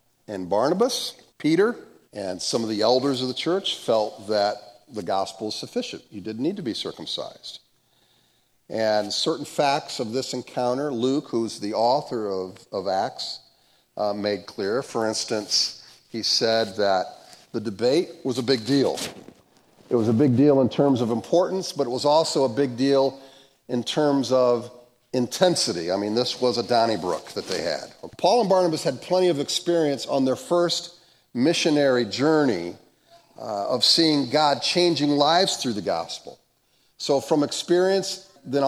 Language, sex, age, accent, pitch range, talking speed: English, male, 50-69, American, 115-155 Hz, 160 wpm